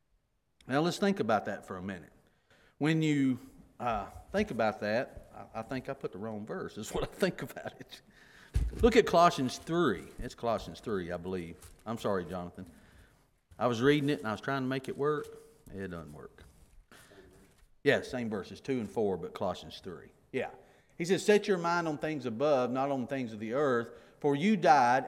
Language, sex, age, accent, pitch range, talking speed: English, male, 40-59, American, 130-205 Hz, 195 wpm